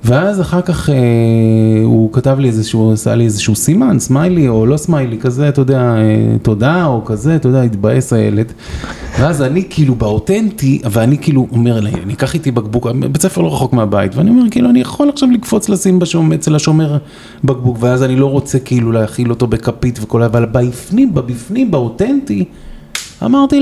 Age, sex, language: 30-49, male, Hebrew